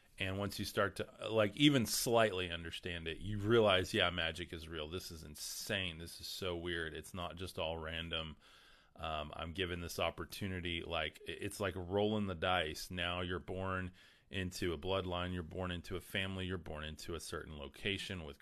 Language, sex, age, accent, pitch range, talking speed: English, male, 30-49, American, 85-105 Hz, 185 wpm